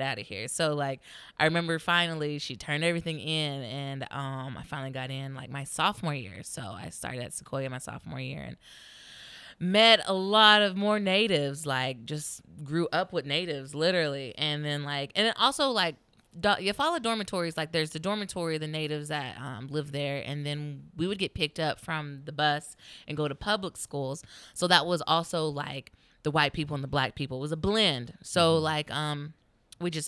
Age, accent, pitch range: 20-39, American, 135-160 Hz